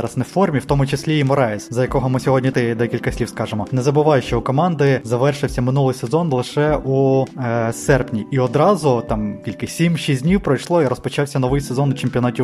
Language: Ukrainian